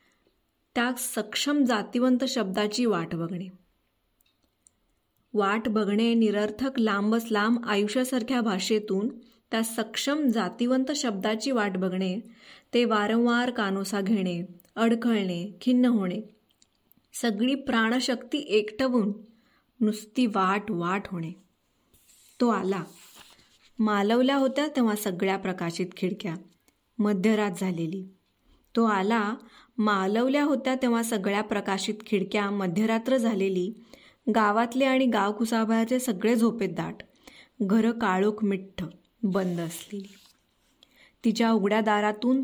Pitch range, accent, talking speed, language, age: 195-240 Hz, native, 90 wpm, Marathi, 20-39